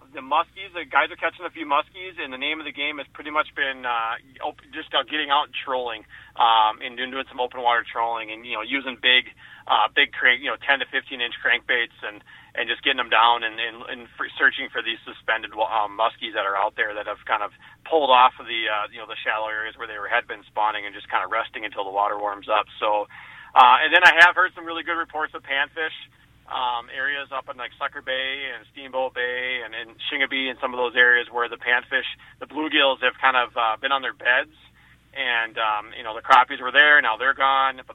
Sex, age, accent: male, 30-49, American